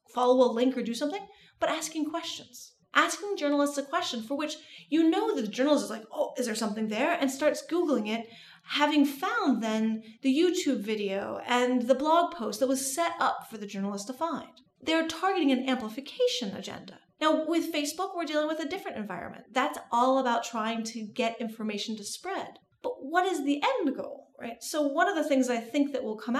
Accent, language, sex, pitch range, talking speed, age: American, English, female, 230-300 Hz, 205 wpm, 30-49